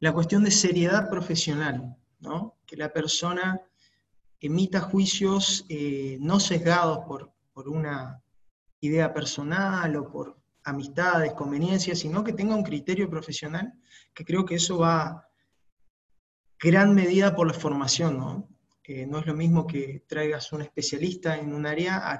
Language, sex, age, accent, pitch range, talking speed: English, male, 20-39, Argentinian, 150-180 Hz, 145 wpm